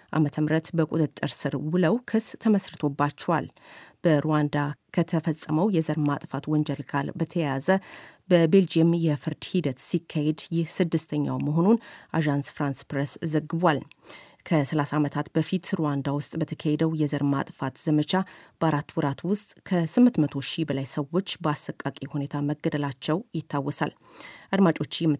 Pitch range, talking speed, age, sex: 145-175 Hz, 90 wpm, 30-49, female